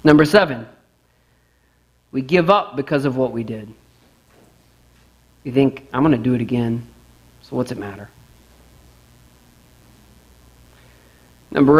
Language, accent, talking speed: English, American, 115 wpm